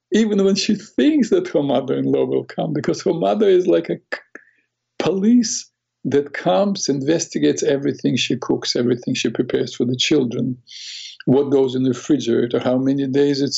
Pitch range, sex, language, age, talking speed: 120-140 Hz, male, English, 50-69, 165 wpm